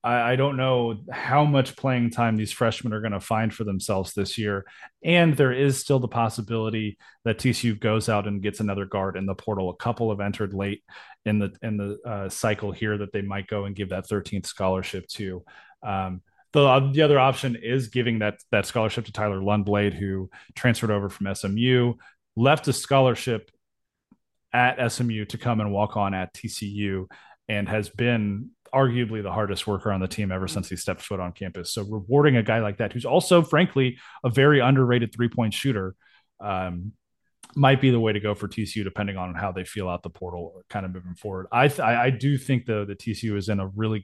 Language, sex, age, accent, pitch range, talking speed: English, male, 30-49, American, 100-120 Hz, 205 wpm